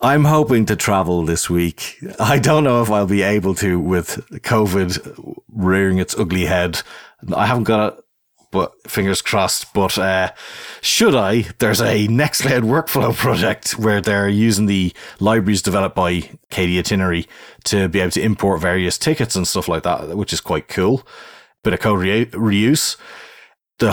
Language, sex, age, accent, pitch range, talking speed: English, male, 30-49, Irish, 85-105 Hz, 165 wpm